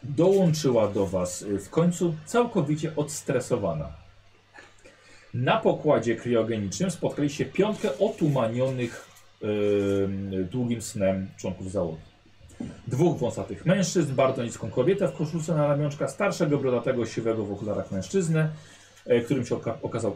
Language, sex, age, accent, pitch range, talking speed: Polish, male, 40-59, native, 110-160 Hz, 115 wpm